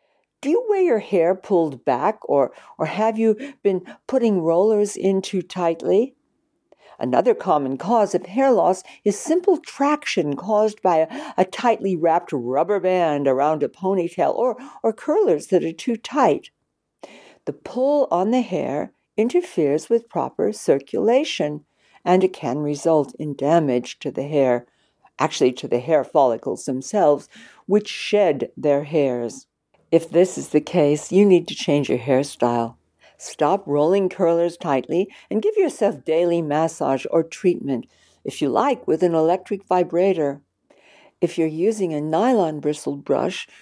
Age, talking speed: 60-79, 150 wpm